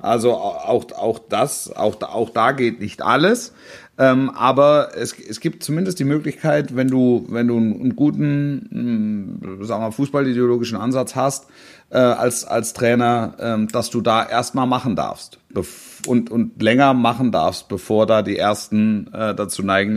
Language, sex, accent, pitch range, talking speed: German, male, German, 115-145 Hz, 145 wpm